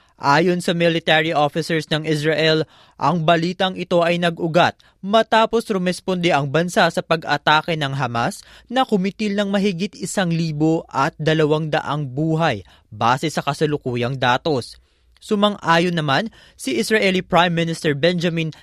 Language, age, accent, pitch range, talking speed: Filipino, 20-39, native, 155-185 Hz, 130 wpm